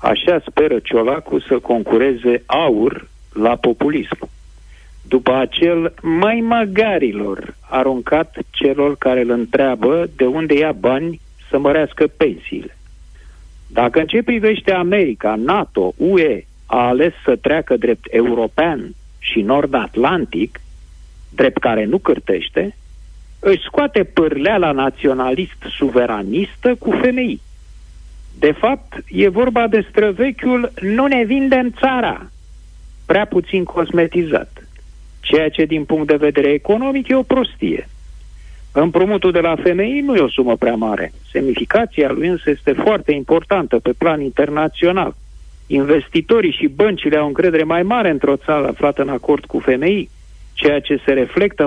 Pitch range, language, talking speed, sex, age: 120-195 Hz, Romanian, 130 wpm, male, 50-69